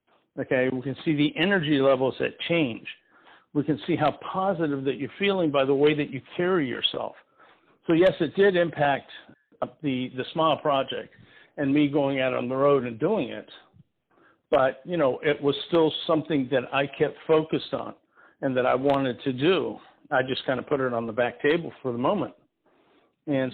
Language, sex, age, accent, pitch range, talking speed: English, male, 50-69, American, 135-165 Hz, 190 wpm